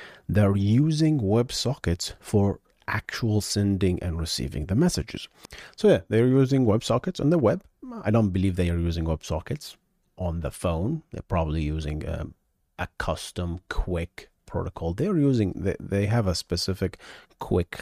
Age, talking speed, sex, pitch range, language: 30-49, 150 wpm, male, 85-115 Hz, English